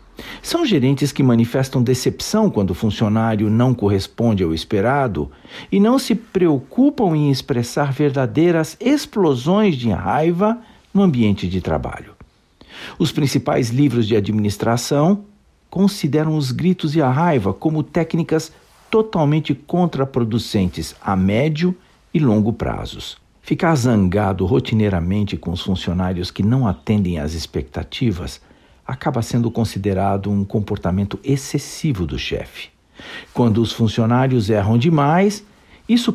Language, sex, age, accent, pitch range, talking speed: Portuguese, male, 60-79, Brazilian, 110-160 Hz, 120 wpm